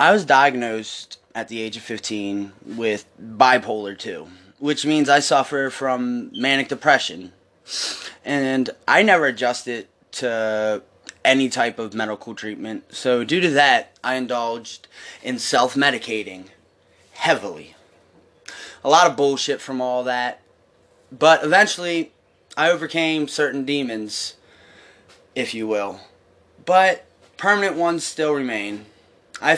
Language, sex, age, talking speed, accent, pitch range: English, male, 20-39, 120 wpm, American, 110-155 Hz